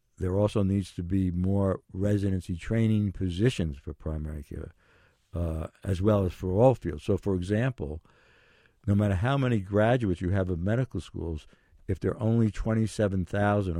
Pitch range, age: 90-110 Hz, 60-79